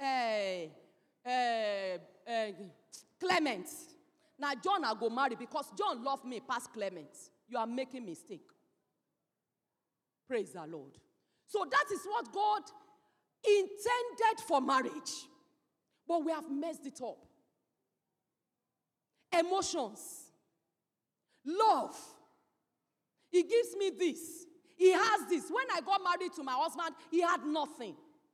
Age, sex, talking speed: 40-59, female, 115 wpm